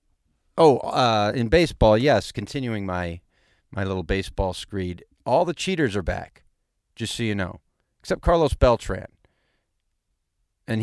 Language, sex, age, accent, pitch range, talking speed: English, male, 40-59, American, 90-120 Hz, 135 wpm